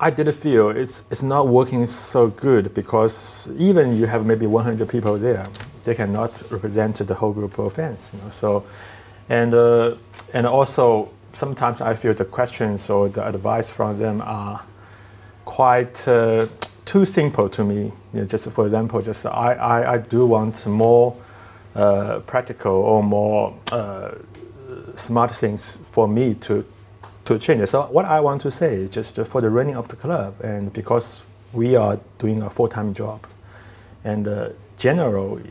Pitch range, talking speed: 100-120 Hz, 165 wpm